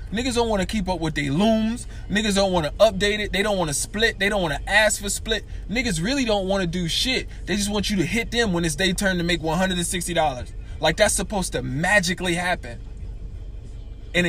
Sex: male